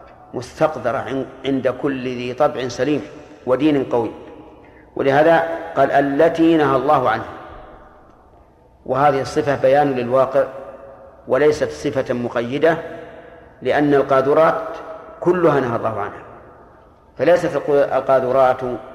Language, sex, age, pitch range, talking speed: Arabic, male, 50-69, 130-150 Hz, 90 wpm